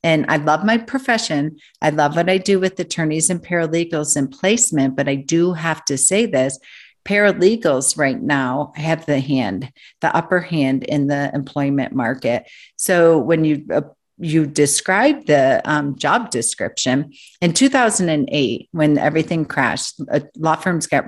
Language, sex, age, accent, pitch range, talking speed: English, female, 50-69, American, 140-165 Hz, 155 wpm